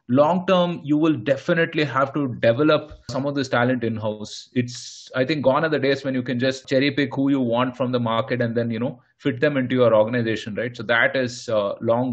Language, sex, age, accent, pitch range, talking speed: English, male, 30-49, Indian, 120-145 Hz, 230 wpm